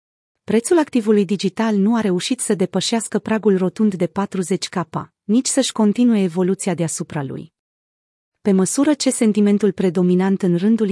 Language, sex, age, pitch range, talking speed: Romanian, female, 30-49, 180-225 Hz, 135 wpm